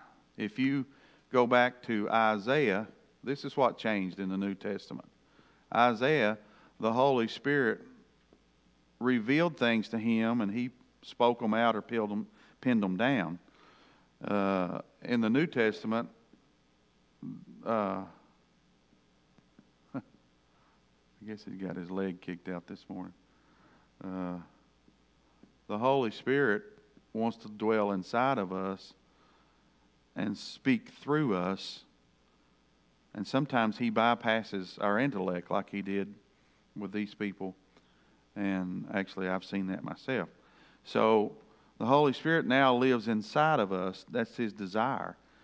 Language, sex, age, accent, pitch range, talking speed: English, male, 50-69, American, 95-115 Hz, 120 wpm